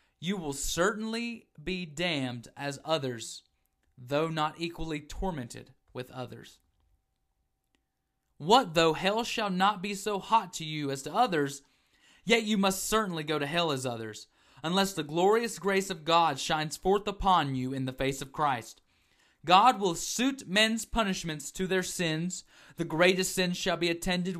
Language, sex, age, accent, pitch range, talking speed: English, male, 30-49, American, 145-195 Hz, 155 wpm